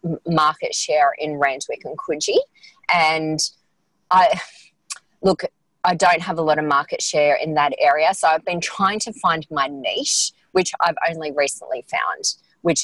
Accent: Australian